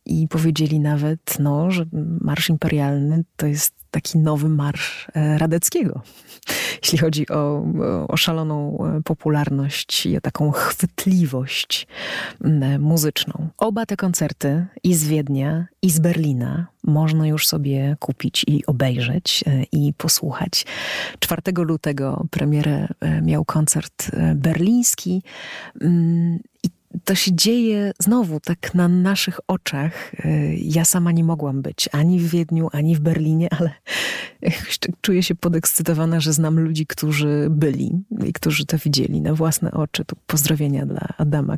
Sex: female